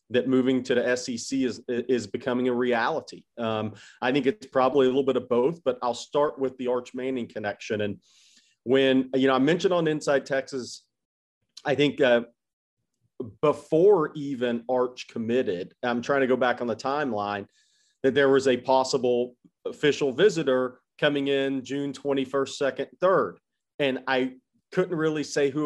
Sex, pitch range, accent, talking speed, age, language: male, 125-140 Hz, American, 165 wpm, 40-59, English